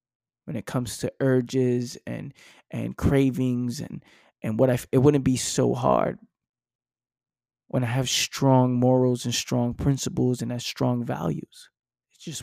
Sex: male